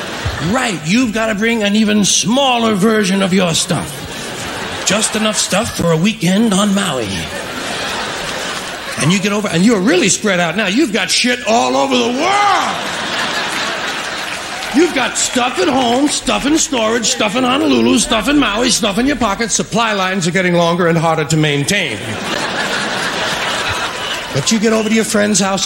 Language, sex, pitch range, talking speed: English, male, 165-220 Hz, 170 wpm